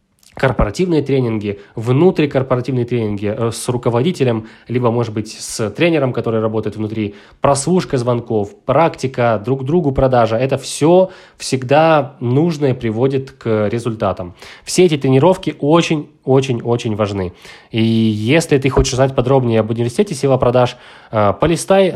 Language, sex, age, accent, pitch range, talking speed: Ukrainian, male, 20-39, native, 115-150 Hz, 120 wpm